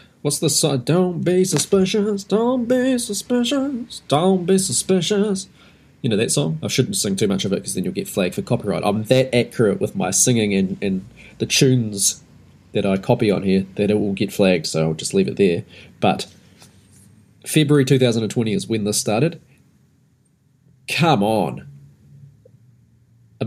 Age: 20-39